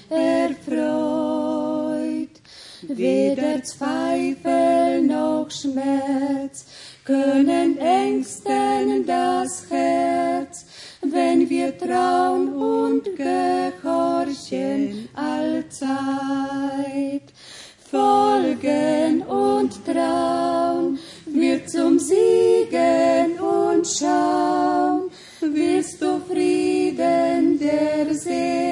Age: 30-49